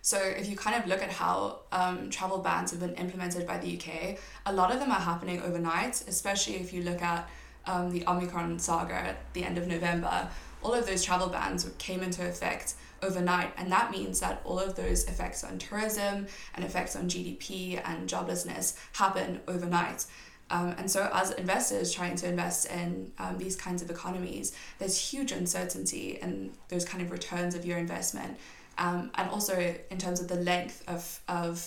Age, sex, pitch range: 20-39, female, 170-185 Hz